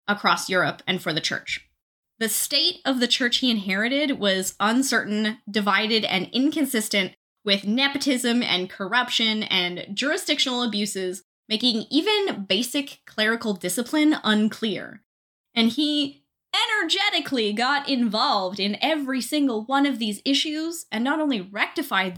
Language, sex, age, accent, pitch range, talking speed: English, female, 20-39, American, 200-270 Hz, 125 wpm